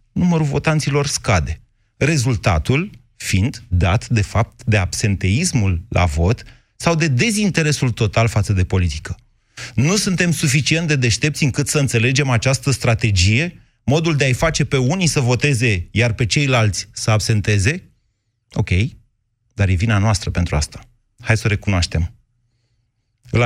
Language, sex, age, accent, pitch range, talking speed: Romanian, male, 30-49, native, 105-140 Hz, 140 wpm